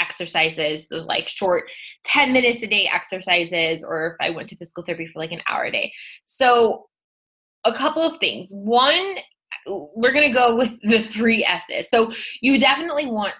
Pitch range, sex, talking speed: 175-220 Hz, female, 175 wpm